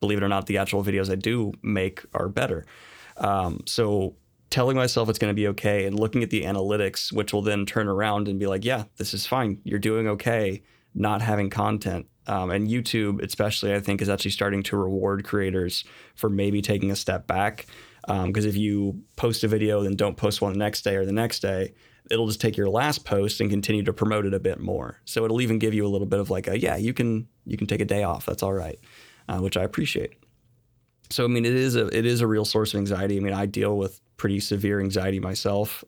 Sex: male